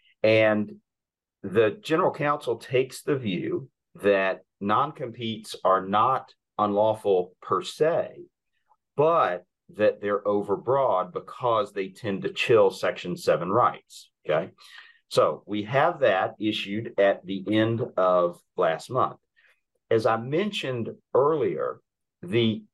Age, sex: 40-59, male